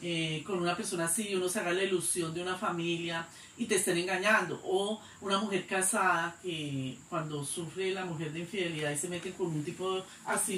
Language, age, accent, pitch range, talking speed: Spanish, 40-59, Colombian, 170-205 Hz, 205 wpm